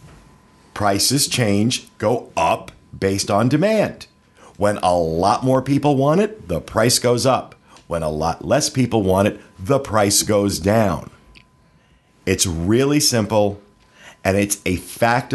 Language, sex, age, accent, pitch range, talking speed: English, male, 50-69, American, 100-140 Hz, 140 wpm